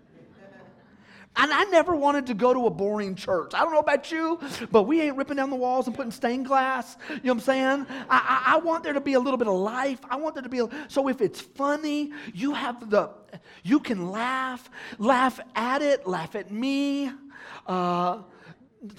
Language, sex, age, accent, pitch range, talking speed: English, male, 40-59, American, 225-280 Hz, 210 wpm